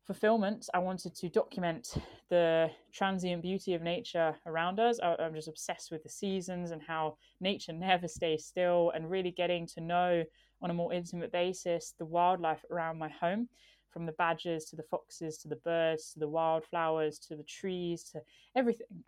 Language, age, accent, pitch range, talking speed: English, 20-39, British, 160-180 Hz, 175 wpm